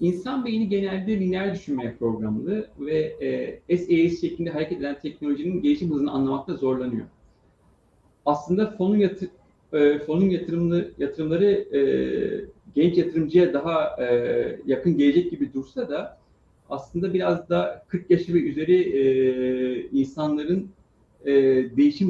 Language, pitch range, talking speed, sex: Turkish, 135-180 Hz, 120 wpm, male